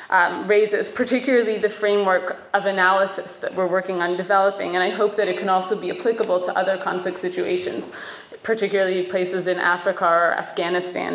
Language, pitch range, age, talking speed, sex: English, 190-235 Hz, 20-39, 165 wpm, female